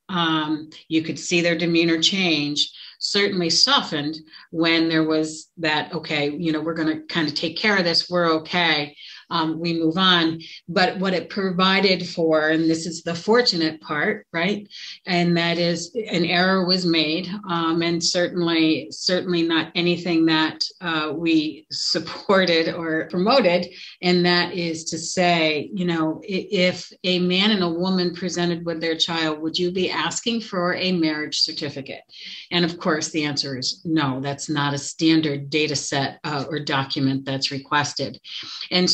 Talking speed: 160 wpm